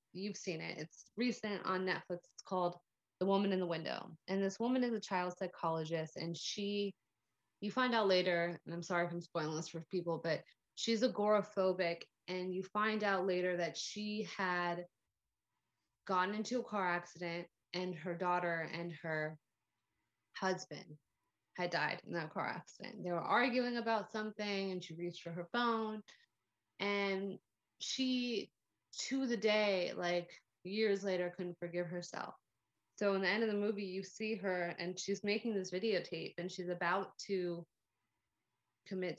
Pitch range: 170-205 Hz